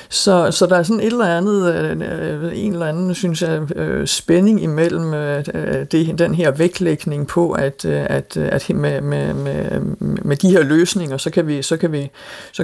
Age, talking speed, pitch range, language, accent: 50-69, 170 wpm, 145-190 Hz, Danish, native